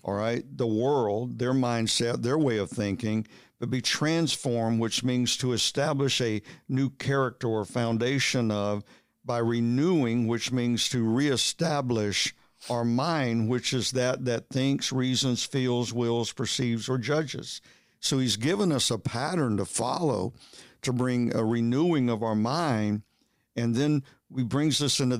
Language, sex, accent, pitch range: English, male, American, 115-140 Hz